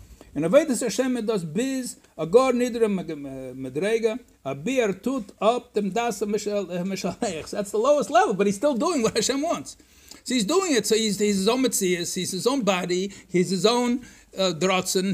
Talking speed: 190 wpm